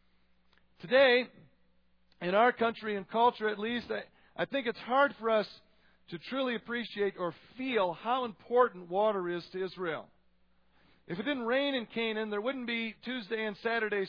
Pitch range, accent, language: 180-235 Hz, American, English